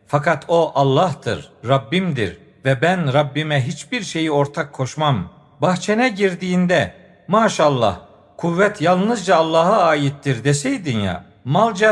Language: Turkish